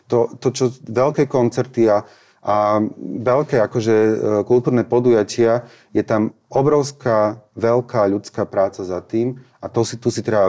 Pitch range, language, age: 105-120 Hz, Slovak, 30-49